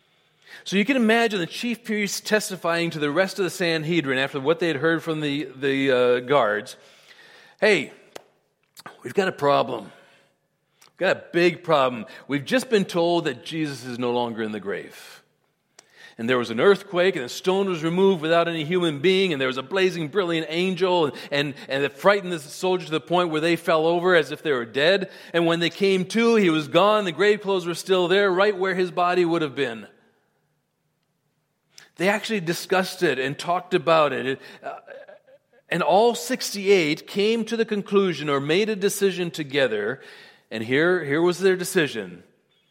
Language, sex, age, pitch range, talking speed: English, male, 40-59, 145-195 Hz, 185 wpm